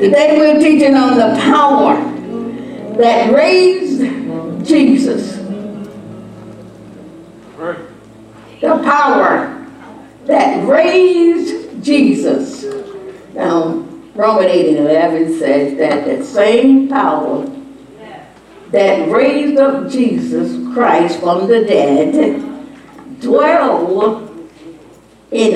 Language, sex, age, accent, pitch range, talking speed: English, female, 60-79, American, 225-300 Hz, 80 wpm